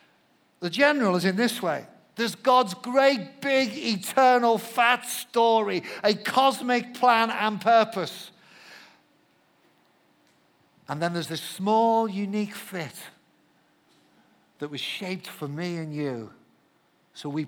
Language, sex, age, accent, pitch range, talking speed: English, male, 50-69, British, 170-225 Hz, 115 wpm